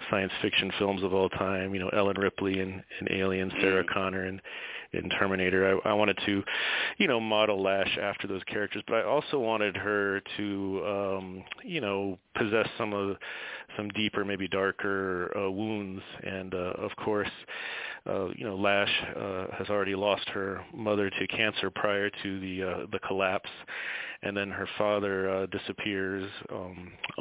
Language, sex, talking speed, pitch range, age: English, male, 170 wpm, 95-105 Hz, 30-49